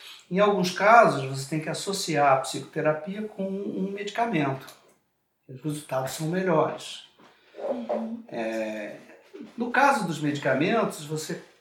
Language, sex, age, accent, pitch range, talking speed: Portuguese, male, 60-79, Brazilian, 140-195 Hz, 110 wpm